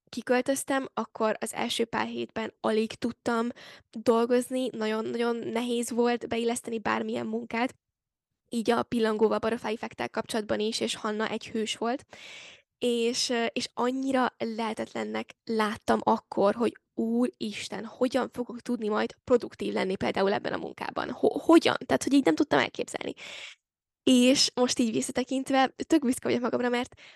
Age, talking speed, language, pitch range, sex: 10-29, 135 wpm, Hungarian, 230-290 Hz, female